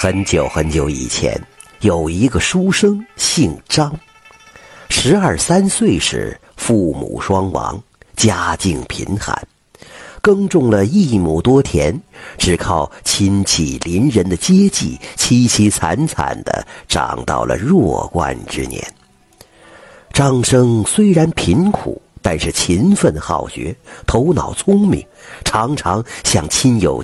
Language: Chinese